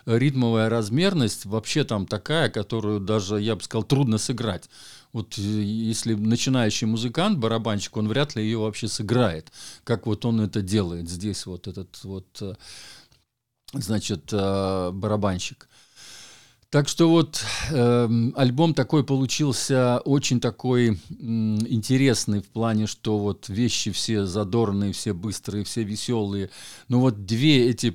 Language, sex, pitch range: Russian, male, 100-120 Hz